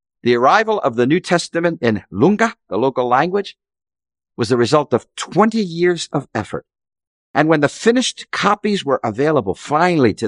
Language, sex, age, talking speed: English, male, 50-69, 165 wpm